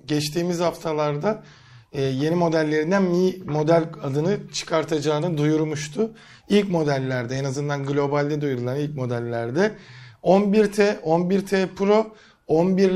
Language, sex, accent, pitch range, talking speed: Turkish, male, native, 150-195 Hz, 95 wpm